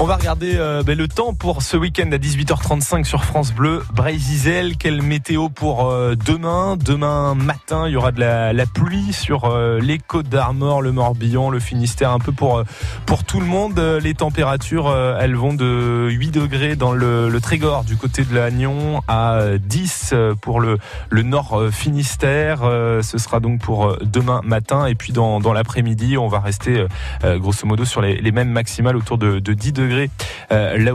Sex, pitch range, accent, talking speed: male, 110-140 Hz, French, 190 wpm